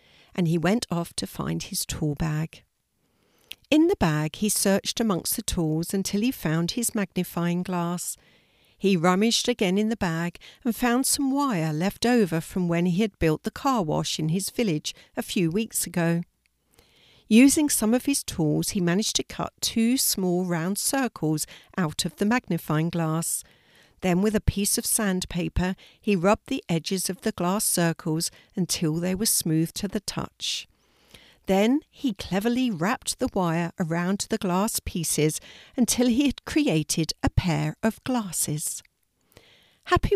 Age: 60-79